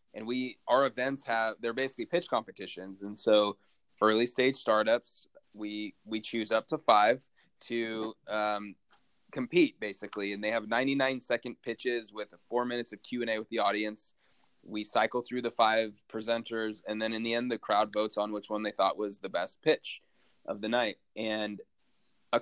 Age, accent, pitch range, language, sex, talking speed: 20-39, American, 105-130 Hz, English, male, 185 wpm